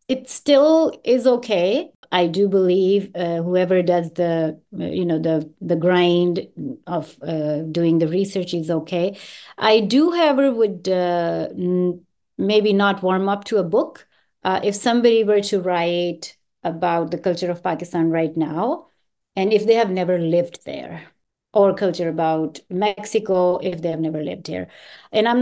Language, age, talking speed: English, 30-49, 160 wpm